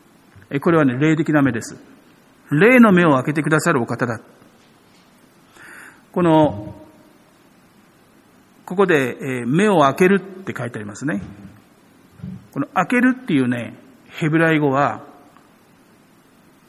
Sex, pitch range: male, 125-175 Hz